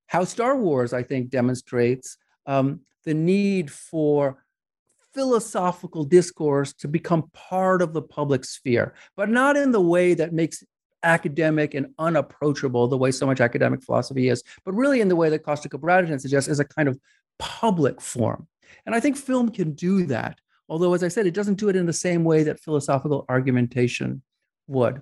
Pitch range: 140-185 Hz